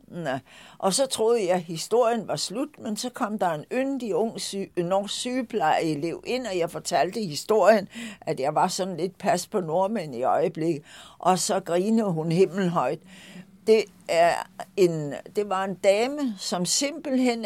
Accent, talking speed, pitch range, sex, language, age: native, 160 wpm, 165-220 Hz, female, Danish, 60-79